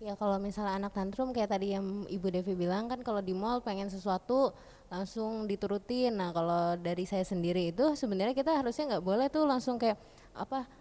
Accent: native